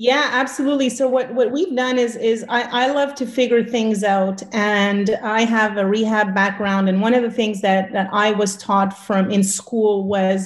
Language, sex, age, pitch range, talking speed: English, female, 30-49, 195-225 Hz, 205 wpm